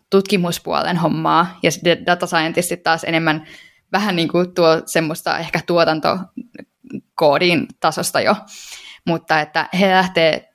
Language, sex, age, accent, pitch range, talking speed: Finnish, female, 10-29, native, 160-185 Hz, 110 wpm